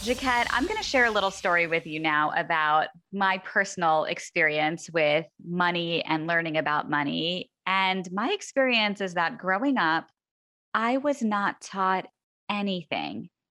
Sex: female